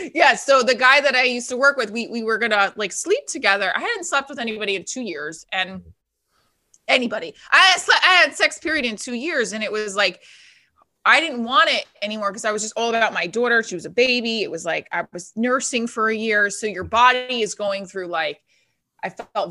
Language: English